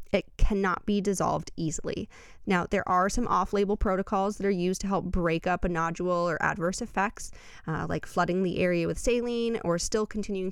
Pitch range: 175-215 Hz